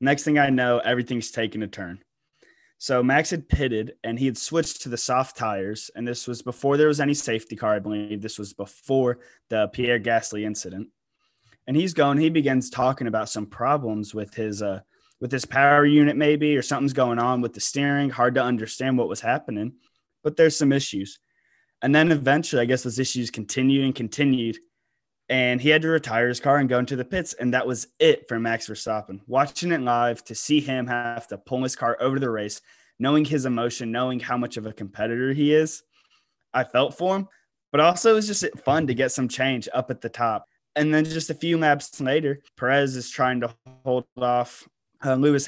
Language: English